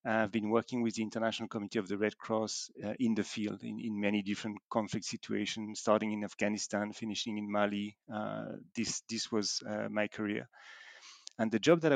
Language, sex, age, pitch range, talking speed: English, male, 40-59, 105-120 Hz, 190 wpm